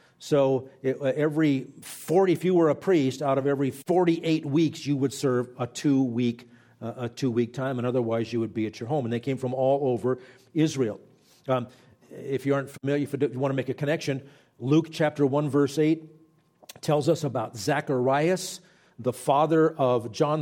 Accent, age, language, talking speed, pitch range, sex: American, 50-69, English, 185 wpm, 125-170 Hz, male